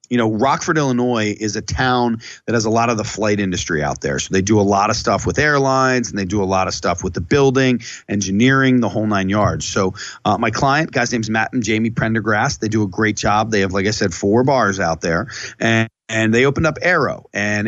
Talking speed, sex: 250 wpm, male